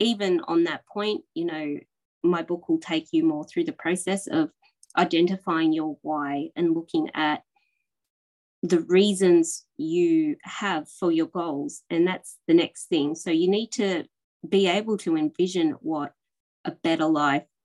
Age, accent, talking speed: 20-39, Australian, 155 wpm